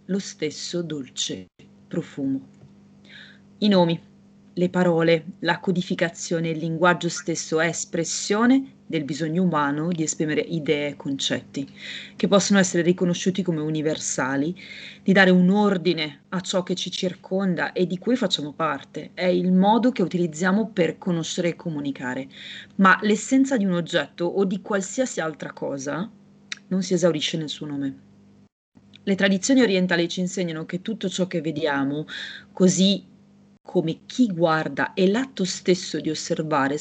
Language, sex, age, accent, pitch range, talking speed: Italian, female, 30-49, native, 160-200 Hz, 140 wpm